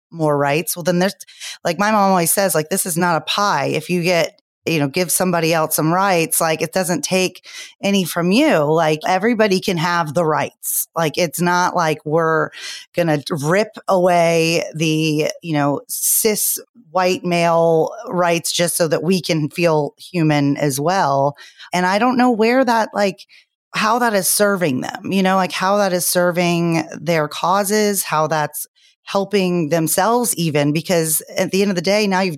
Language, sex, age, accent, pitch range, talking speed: English, female, 30-49, American, 160-200 Hz, 180 wpm